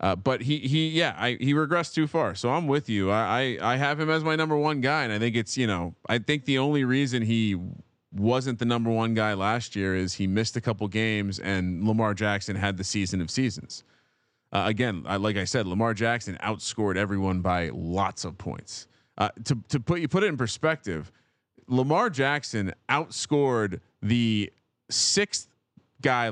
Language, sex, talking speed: English, male, 200 wpm